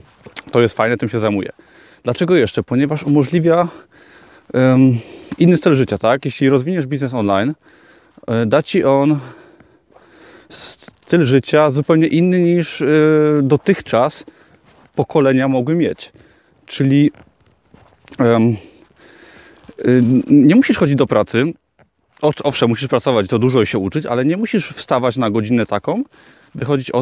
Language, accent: Polish, native